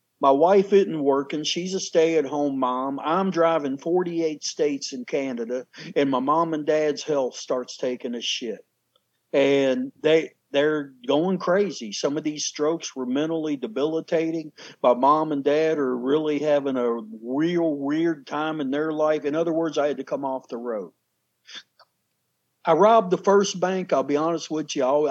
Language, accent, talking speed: English, American, 165 wpm